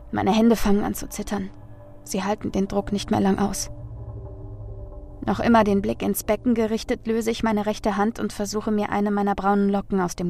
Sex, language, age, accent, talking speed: female, German, 20-39, German, 205 wpm